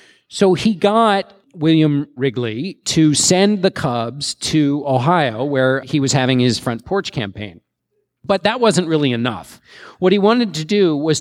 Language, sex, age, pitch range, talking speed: English, male, 40-59, 130-190 Hz, 160 wpm